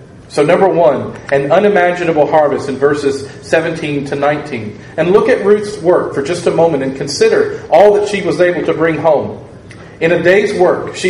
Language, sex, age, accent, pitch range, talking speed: English, male, 40-59, American, 140-180 Hz, 190 wpm